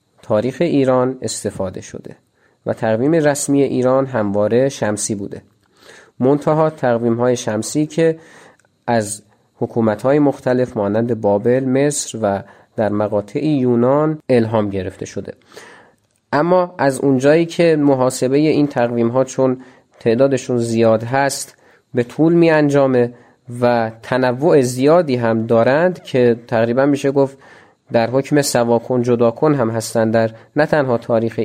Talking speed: 120 wpm